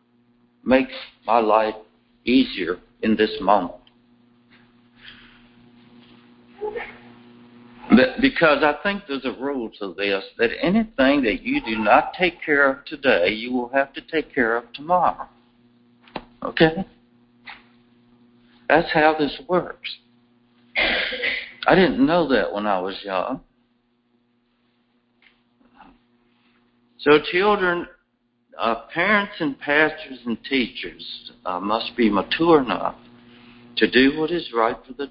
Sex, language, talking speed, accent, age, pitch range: male, English, 115 wpm, American, 60-79, 120-145 Hz